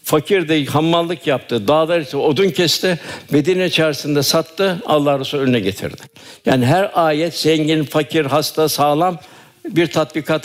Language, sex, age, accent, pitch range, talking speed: Turkish, male, 60-79, native, 145-165 Hz, 130 wpm